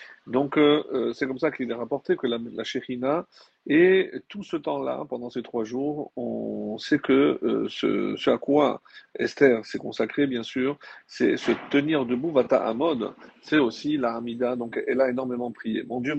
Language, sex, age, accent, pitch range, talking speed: French, male, 50-69, French, 120-145 Hz, 195 wpm